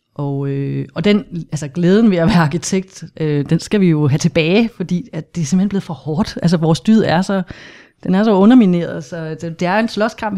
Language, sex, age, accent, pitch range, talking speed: Danish, female, 30-49, native, 155-185 Hz, 230 wpm